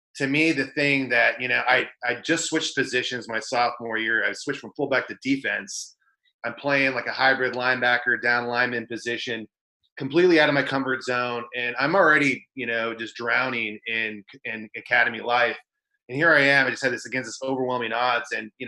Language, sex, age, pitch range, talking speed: English, male, 30-49, 115-140 Hz, 195 wpm